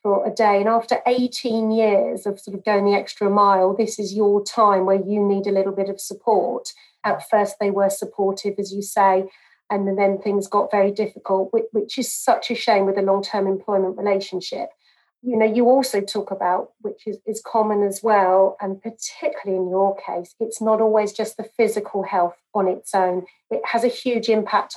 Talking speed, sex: 195 wpm, female